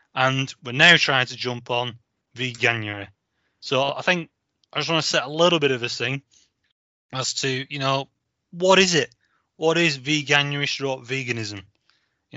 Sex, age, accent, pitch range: male, 20-39, British, 120-150 Hz